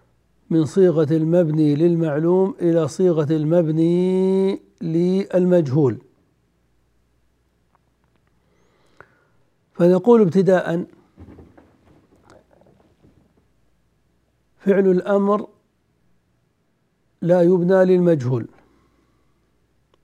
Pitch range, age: 150-185 Hz, 60-79